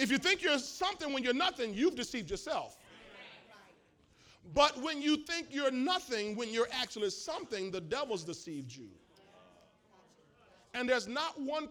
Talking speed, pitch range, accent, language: 150 wpm, 225-355 Hz, American, English